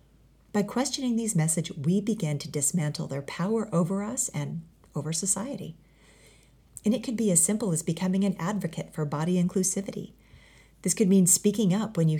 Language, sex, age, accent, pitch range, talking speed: English, female, 40-59, American, 155-195 Hz, 170 wpm